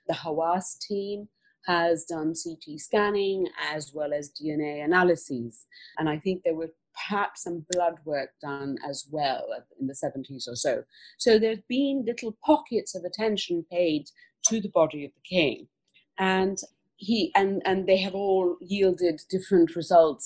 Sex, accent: female, British